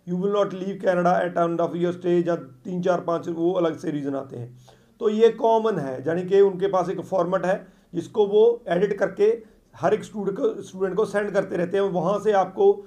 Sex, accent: male, native